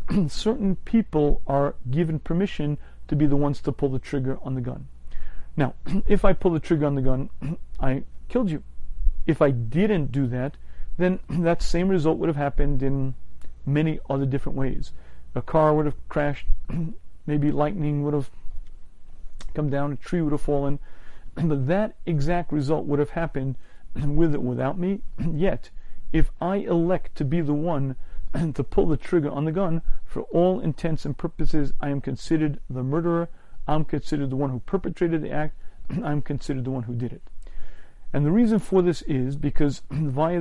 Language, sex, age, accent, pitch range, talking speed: English, male, 40-59, American, 135-165 Hz, 180 wpm